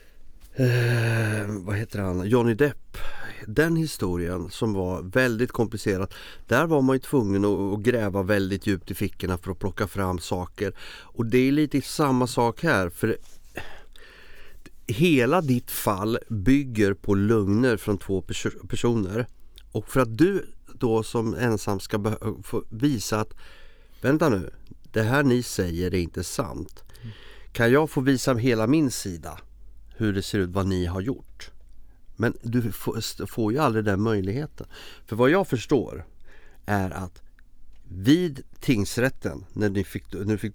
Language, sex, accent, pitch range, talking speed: Swedish, male, native, 95-125 Hz, 150 wpm